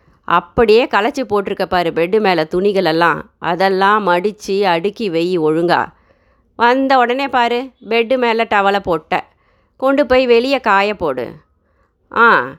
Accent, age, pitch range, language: native, 30-49, 180-245 Hz, Tamil